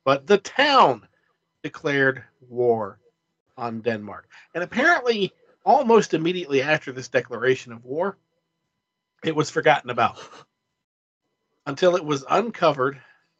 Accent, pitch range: American, 120-165 Hz